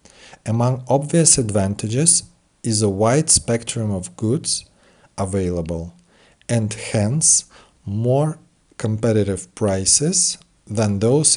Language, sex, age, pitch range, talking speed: Russian, male, 40-59, 95-130 Hz, 90 wpm